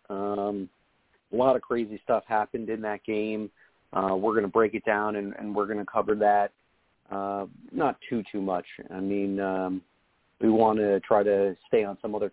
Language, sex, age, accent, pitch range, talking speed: English, male, 40-59, American, 95-110 Hz, 200 wpm